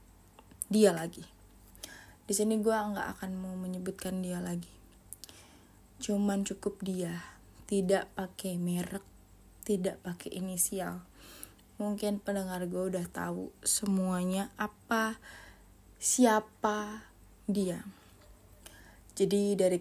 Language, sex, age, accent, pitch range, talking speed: Indonesian, female, 20-39, native, 175-200 Hz, 95 wpm